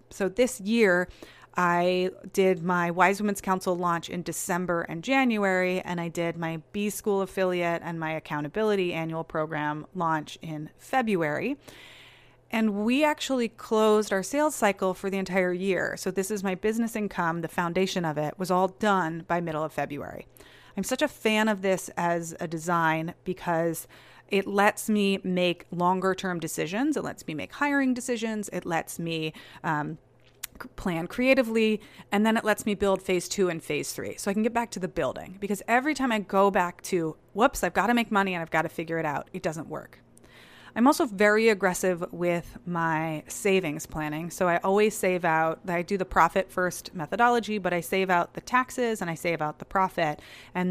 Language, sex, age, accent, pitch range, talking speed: English, female, 30-49, American, 165-205 Hz, 190 wpm